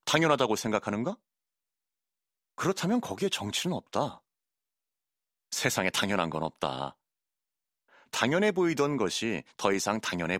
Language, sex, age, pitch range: Korean, male, 30-49, 95-140 Hz